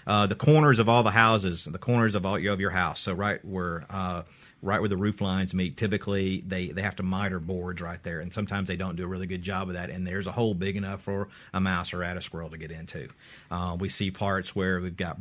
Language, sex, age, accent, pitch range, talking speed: English, male, 40-59, American, 90-110 Hz, 270 wpm